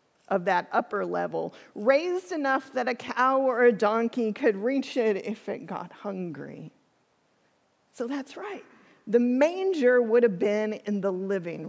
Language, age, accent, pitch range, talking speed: English, 40-59, American, 215-265 Hz, 155 wpm